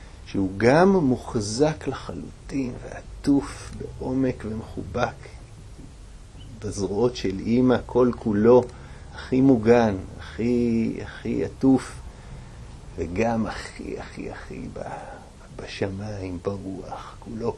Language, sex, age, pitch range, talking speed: Hebrew, male, 50-69, 95-120 Hz, 80 wpm